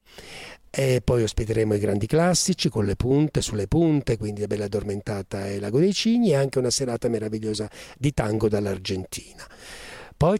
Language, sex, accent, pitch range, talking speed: Italian, male, native, 110-135 Hz, 160 wpm